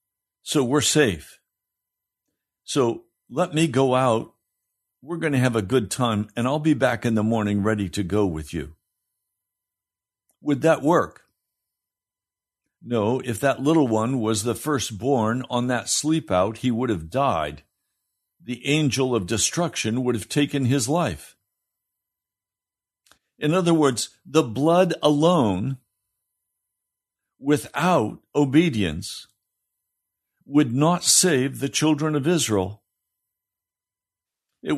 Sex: male